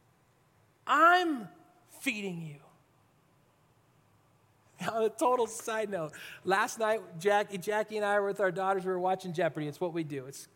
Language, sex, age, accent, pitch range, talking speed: English, male, 30-49, American, 155-215 Hz, 155 wpm